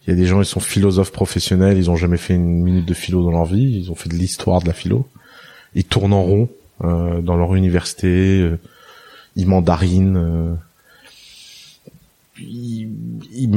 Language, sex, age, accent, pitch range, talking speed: French, male, 20-39, French, 85-105 Hz, 185 wpm